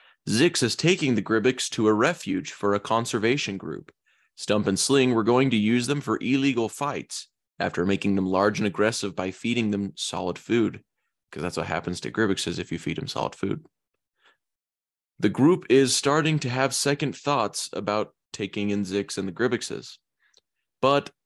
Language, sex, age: English, male, 20-39